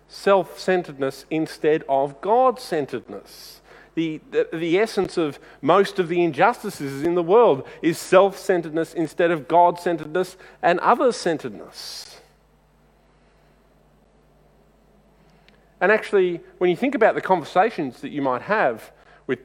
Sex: male